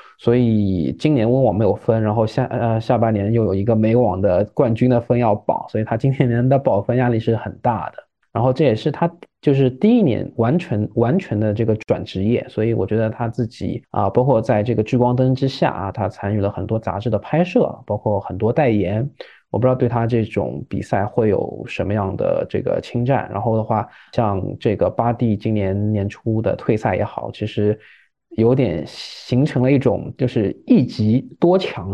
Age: 20-39